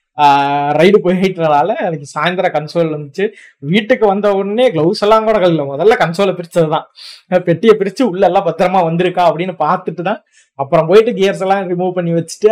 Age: 20-39